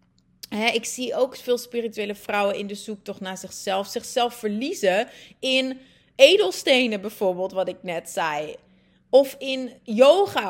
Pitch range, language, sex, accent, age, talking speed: 195-255 Hz, Dutch, female, Dutch, 30-49, 130 wpm